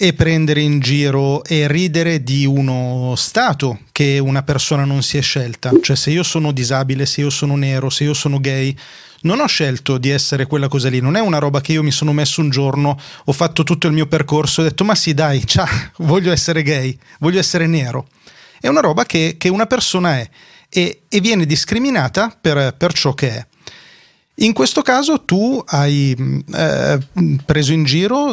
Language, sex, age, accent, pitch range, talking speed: Italian, male, 30-49, native, 140-170 Hz, 195 wpm